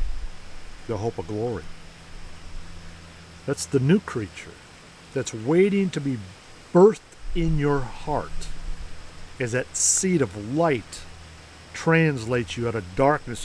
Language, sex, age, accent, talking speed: English, male, 50-69, American, 115 wpm